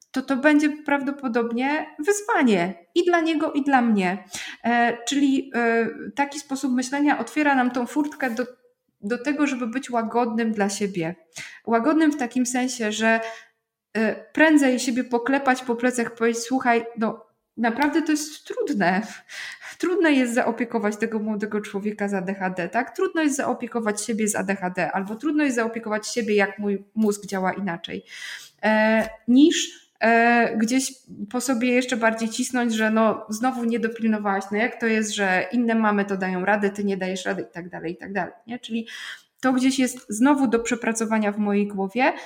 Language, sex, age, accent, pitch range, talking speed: Polish, female, 20-39, native, 205-255 Hz, 160 wpm